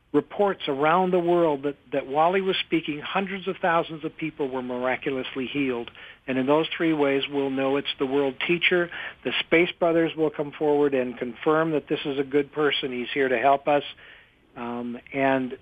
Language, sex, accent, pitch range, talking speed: English, male, American, 140-175 Hz, 190 wpm